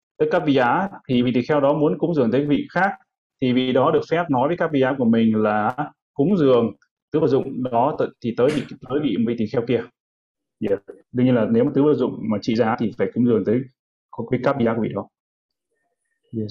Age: 20-39